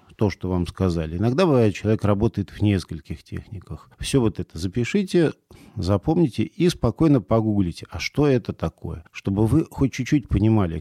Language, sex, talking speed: Russian, male, 155 wpm